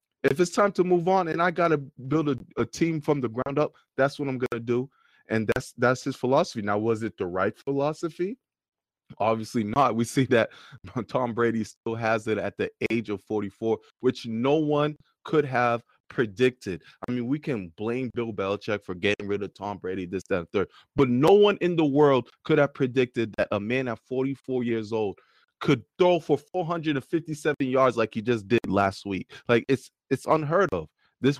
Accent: American